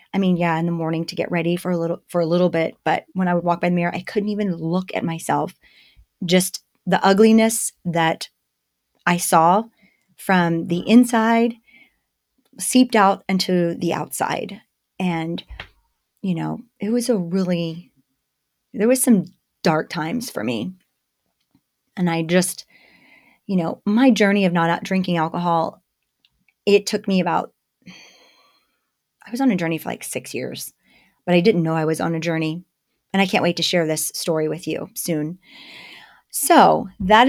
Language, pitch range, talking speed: English, 170-220 Hz, 170 wpm